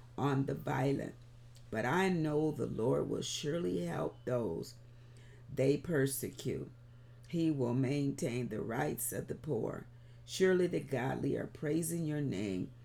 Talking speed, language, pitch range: 135 wpm, English, 120-135 Hz